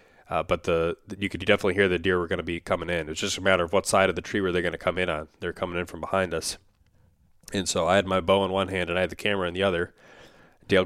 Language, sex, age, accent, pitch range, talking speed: English, male, 20-39, American, 90-100 Hz, 320 wpm